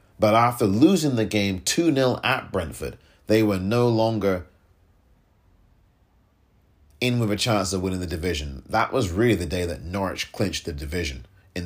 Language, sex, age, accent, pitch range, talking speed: English, male, 30-49, British, 90-110 Hz, 160 wpm